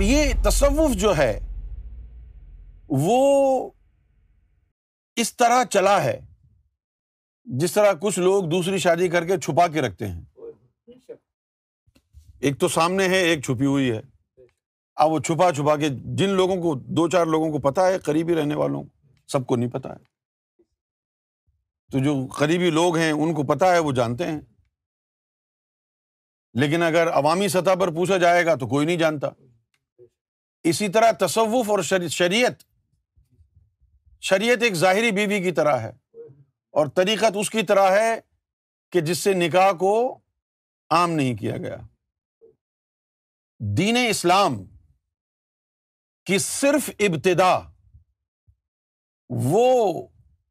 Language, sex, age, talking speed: Urdu, male, 50-69, 130 wpm